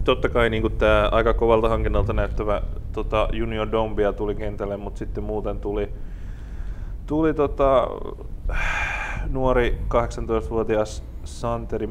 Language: Finnish